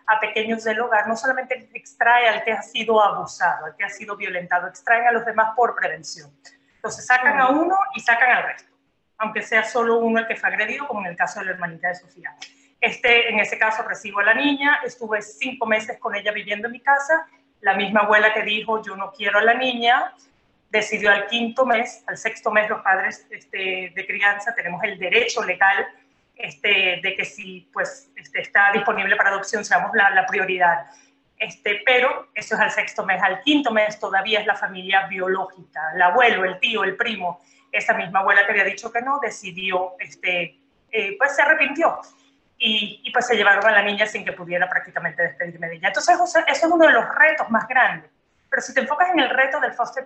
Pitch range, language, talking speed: 195-250 Hz, Spanish, 210 wpm